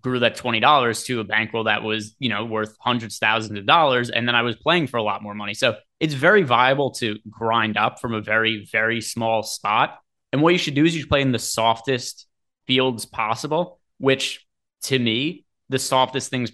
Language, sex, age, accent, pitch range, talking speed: English, male, 20-39, American, 110-135 Hz, 210 wpm